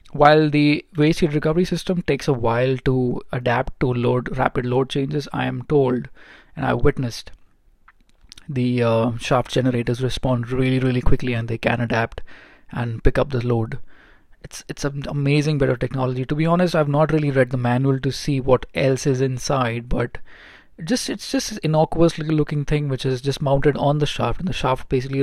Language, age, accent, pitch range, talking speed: English, 20-39, Indian, 125-150 Hz, 195 wpm